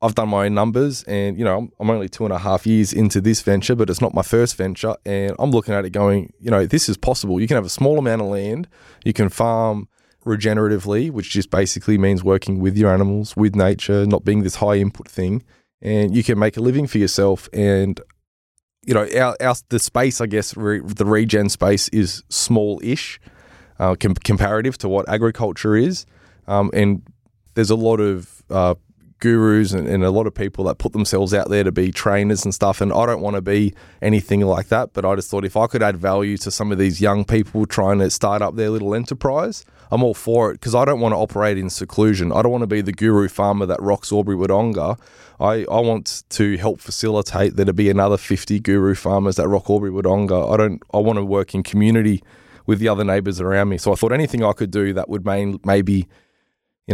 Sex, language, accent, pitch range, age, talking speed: male, English, Australian, 100-110 Hz, 20-39, 220 wpm